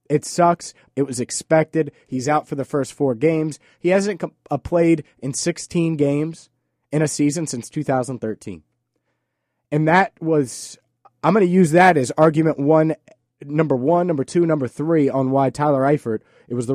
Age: 30-49